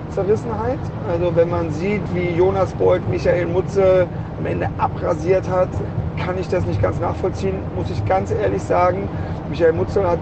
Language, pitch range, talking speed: German, 95-120 Hz, 160 wpm